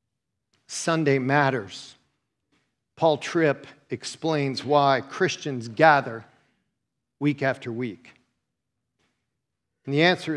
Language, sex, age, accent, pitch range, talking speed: English, male, 50-69, American, 130-180 Hz, 80 wpm